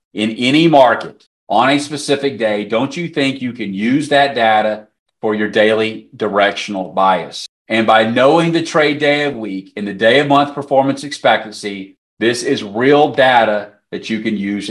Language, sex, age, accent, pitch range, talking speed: English, male, 40-59, American, 110-140 Hz, 175 wpm